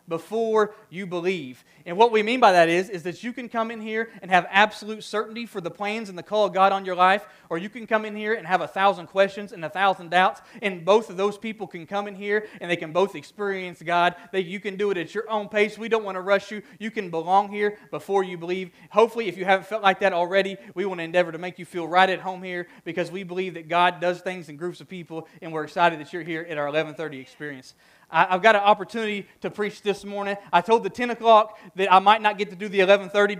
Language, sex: English, male